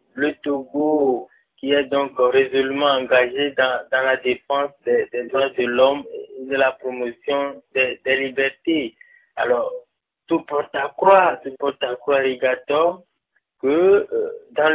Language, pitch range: French, 130-170 Hz